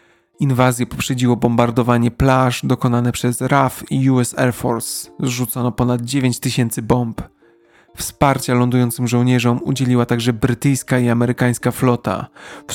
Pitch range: 120-130 Hz